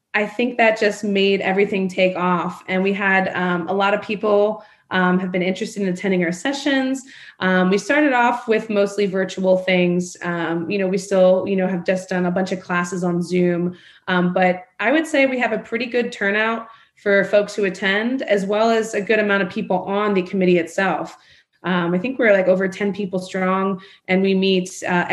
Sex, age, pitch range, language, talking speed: female, 20-39, 180-210 Hz, English, 210 wpm